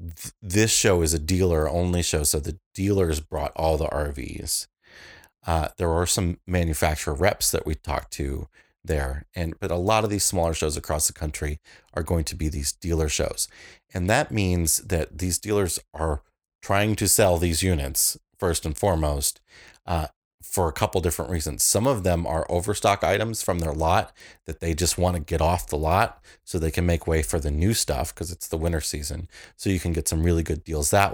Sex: male